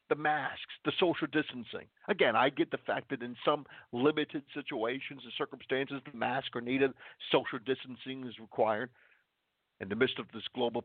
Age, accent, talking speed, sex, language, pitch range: 50-69, American, 170 wpm, male, English, 115-150 Hz